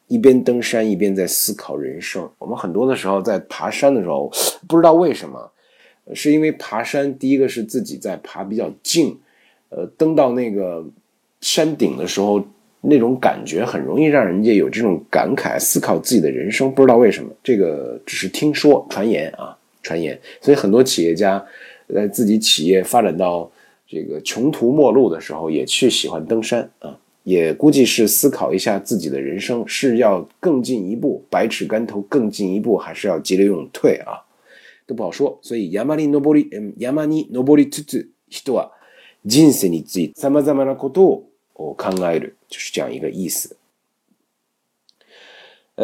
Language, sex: Chinese, male